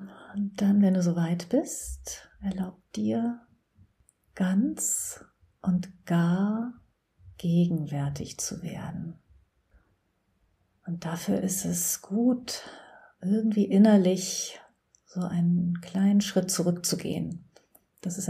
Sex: female